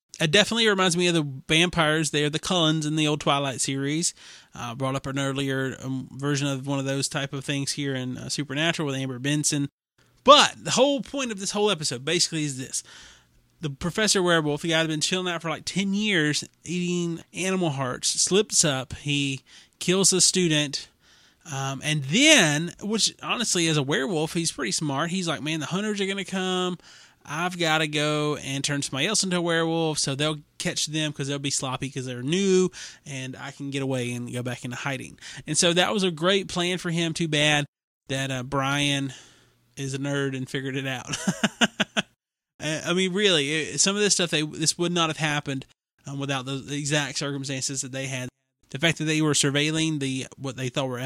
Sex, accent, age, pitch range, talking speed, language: male, American, 30-49, 135-175 Hz, 205 wpm, English